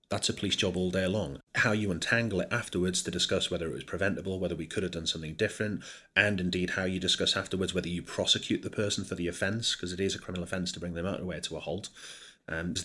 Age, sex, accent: 30-49, male, British